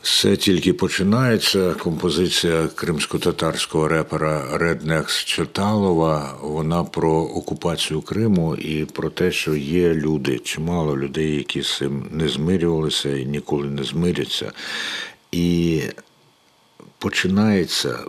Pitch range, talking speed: 70-85 Hz, 100 wpm